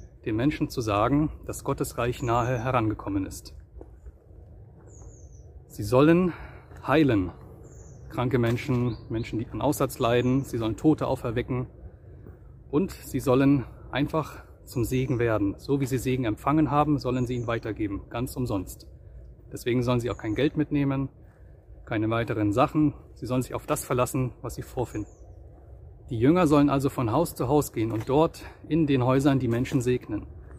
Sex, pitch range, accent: male, 110-140 Hz, German